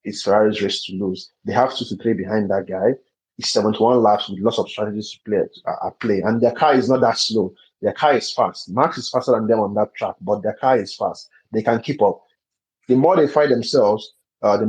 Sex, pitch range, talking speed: male, 105-130 Hz, 245 wpm